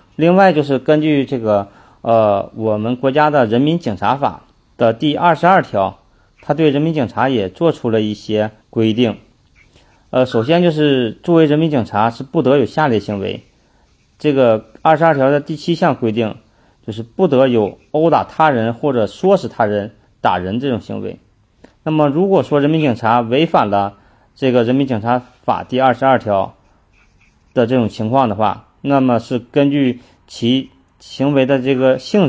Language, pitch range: Chinese, 110-140 Hz